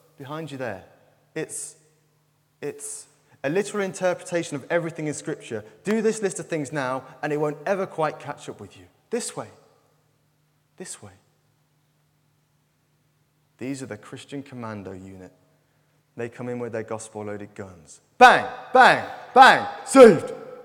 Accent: British